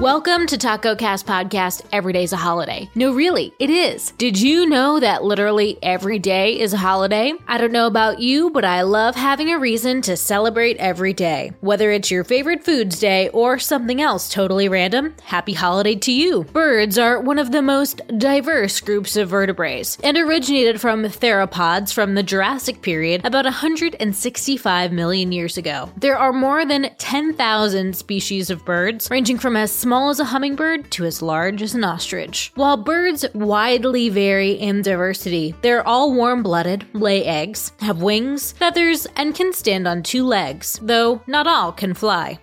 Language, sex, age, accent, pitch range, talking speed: English, female, 20-39, American, 195-270 Hz, 175 wpm